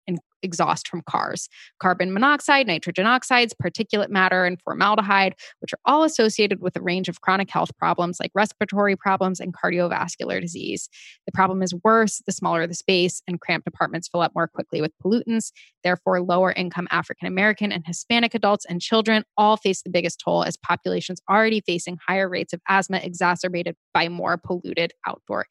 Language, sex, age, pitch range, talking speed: English, female, 20-39, 175-205 Hz, 170 wpm